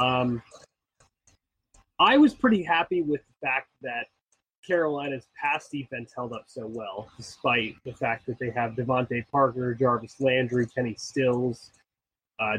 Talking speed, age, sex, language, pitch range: 140 wpm, 20-39, male, English, 125-145 Hz